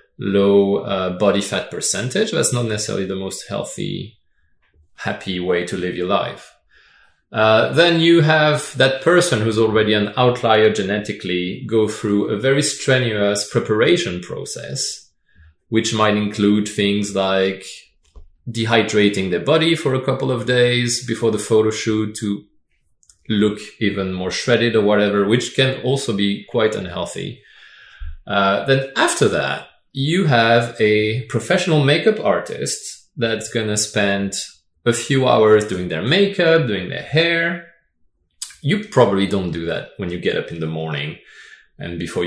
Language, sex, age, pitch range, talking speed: English, male, 30-49, 100-130 Hz, 145 wpm